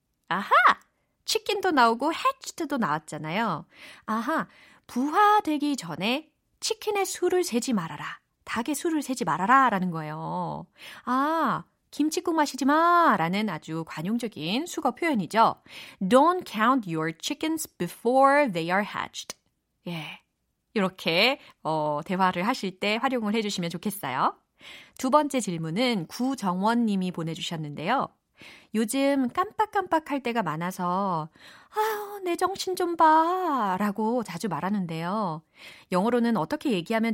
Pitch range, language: 180-295 Hz, Korean